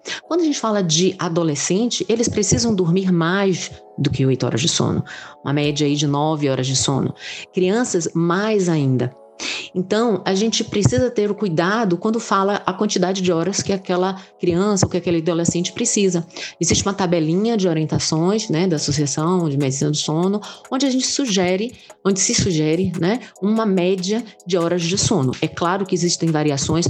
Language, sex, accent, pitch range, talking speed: Portuguese, female, Brazilian, 160-200 Hz, 175 wpm